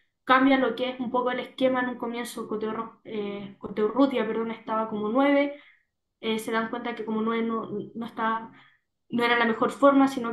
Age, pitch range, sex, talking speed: 10-29, 215-245 Hz, female, 200 wpm